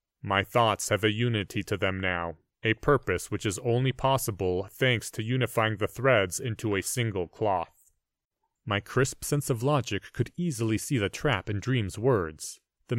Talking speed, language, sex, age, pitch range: 170 wpm, English, male, 30-49, 100-145 Hz